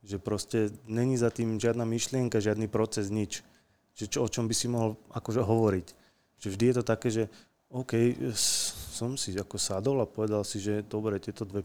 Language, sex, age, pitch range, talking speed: Slovak, male, 30-49, 105-125 Hz, 185 wpm